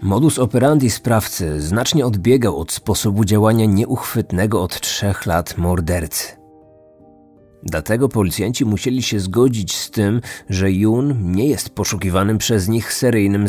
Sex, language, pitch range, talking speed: male, Polish, 95-125 Hz, 125 wpm